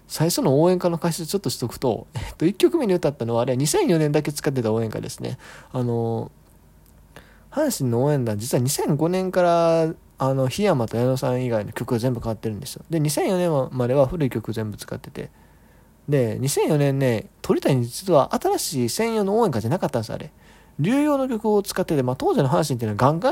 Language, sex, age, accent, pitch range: Japanese, male, 20-39, native, 115-155 Hz